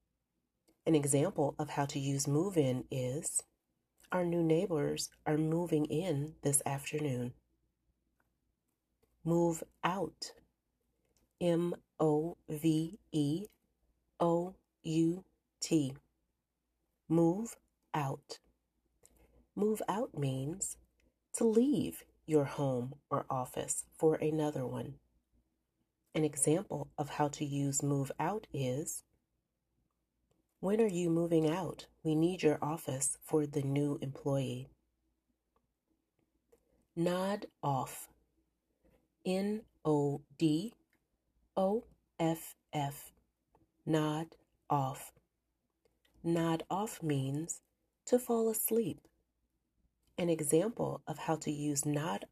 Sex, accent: female, American